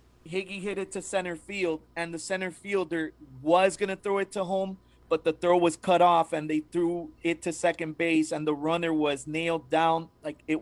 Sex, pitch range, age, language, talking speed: male, 155-200 Hz, 30-49, English, 210 wpm